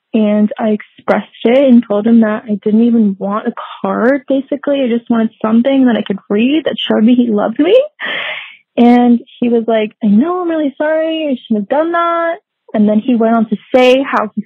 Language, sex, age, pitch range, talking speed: English, female, 20-39, 210-250 Hz, 215 wpm